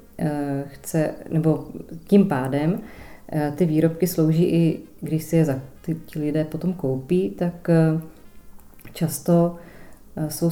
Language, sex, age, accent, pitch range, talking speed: Czech, female, 30-49, native, 150-170 Hz, 110 wpm